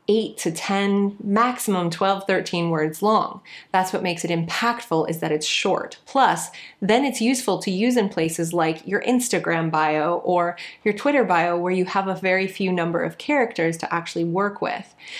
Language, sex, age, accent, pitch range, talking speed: English, female, 20-39, American, 170-215 Hz, 180 wpm